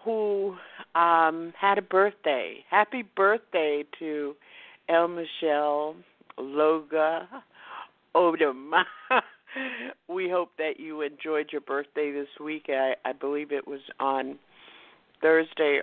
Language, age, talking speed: English, 50-69, 105 wpm